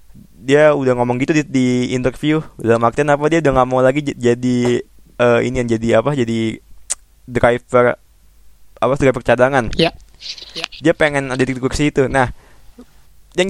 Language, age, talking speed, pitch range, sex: Indonesian, 20-39, 145 wpm, 120-160 Hz, male